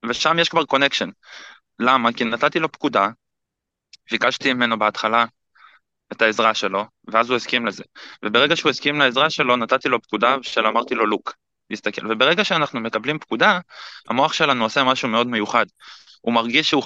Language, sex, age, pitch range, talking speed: Hebrew, male, 20-39, 115-150 Hz, 160 wpm